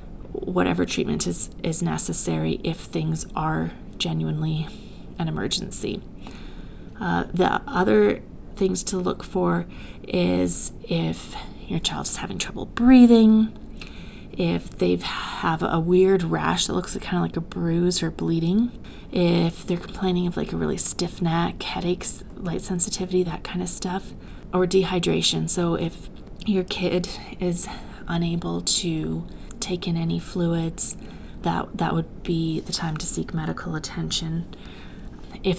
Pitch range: 165-205 Hz